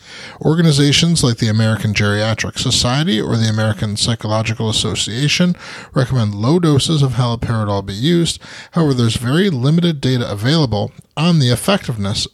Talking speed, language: 130 wpm, English